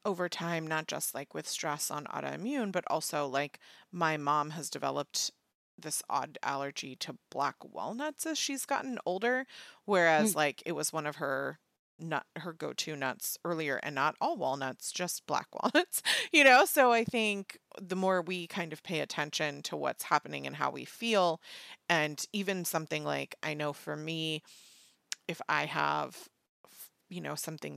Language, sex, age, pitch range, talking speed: English, female, 30-49, 155-205 Hz, 170 wpm